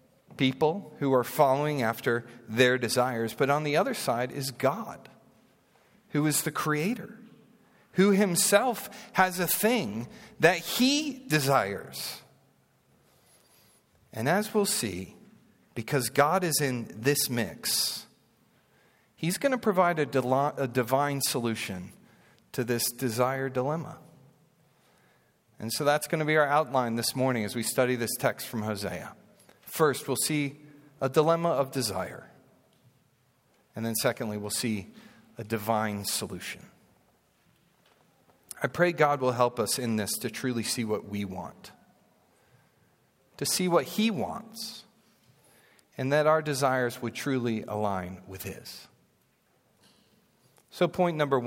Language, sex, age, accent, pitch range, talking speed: English, male, 40-59, American, 115-160 Hz, 130 wpm